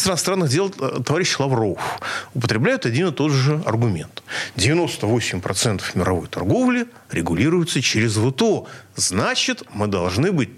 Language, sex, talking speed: Russian, male, 120 wpm